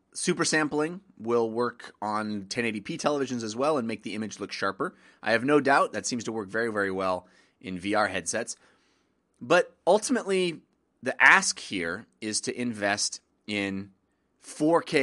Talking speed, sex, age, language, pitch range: 155 wpm, male, 30-49, English, 100-135 Hz